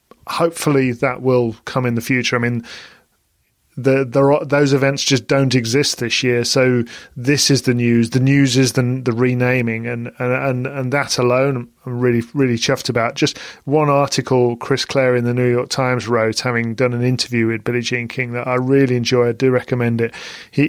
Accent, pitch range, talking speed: British, 120-135 Hz, 200 wpm